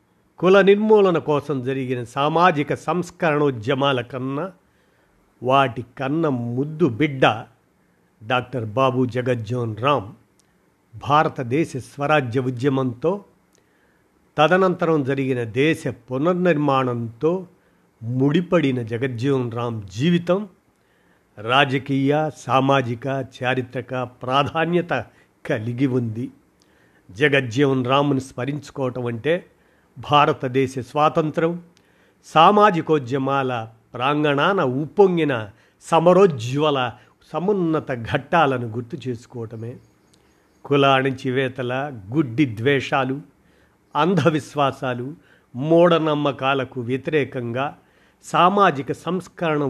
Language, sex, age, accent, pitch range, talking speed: Telugu, male, 50-69, native, 125-155 Hz, 65 wpm